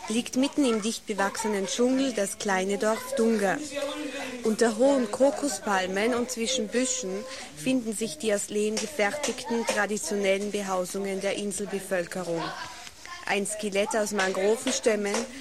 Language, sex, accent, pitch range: English, female, German, 190-225 Hz